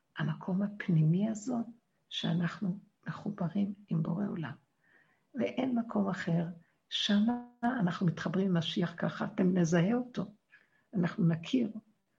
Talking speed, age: 105 wpm, 60-79